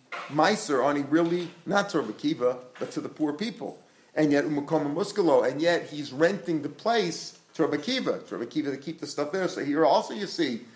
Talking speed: 195 wpm